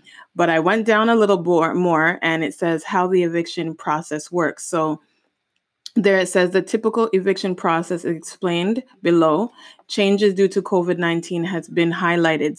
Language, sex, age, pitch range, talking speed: English, female, 20-39, 160-180 Hz, 155 wpm